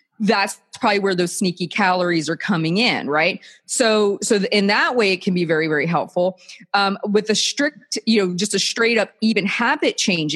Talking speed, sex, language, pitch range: 195 wpm, female, English, 180-240 Hz